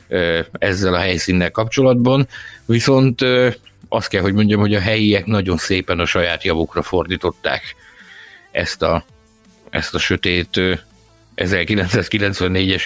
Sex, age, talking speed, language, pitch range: male, 50-69, 110 wpm, Hungarian, 95-115 Hz